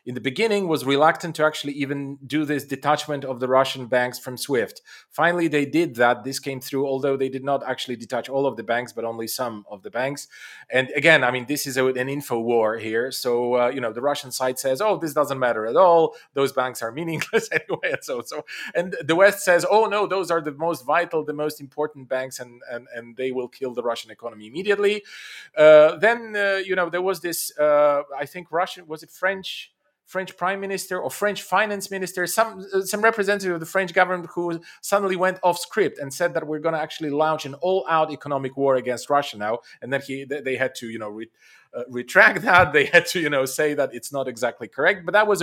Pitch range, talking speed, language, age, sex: 135-180 Hz, 230 wpm, English, 30-49, male